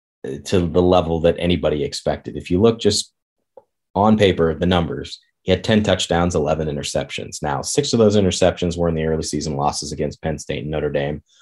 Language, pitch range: English, 80-95 Hz